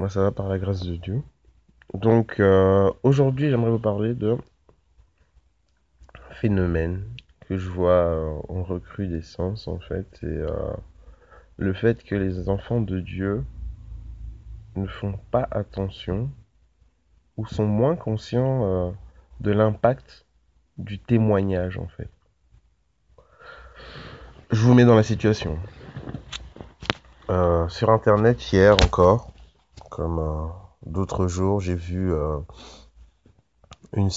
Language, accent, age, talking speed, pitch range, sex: French, French, 30-49, 115 wpm, 80-100 Hz, male